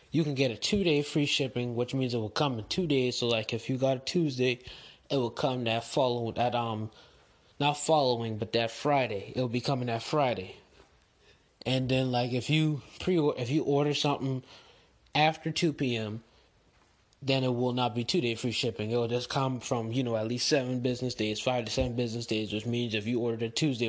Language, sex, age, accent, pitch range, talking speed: English, male, 20-39, American, 120-150 Hz, 215 wpm